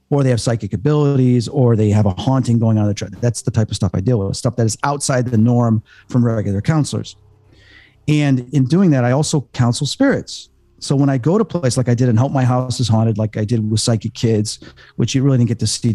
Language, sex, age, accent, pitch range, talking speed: English, male, 40-59, American, 110-140 Hz, 250 wpm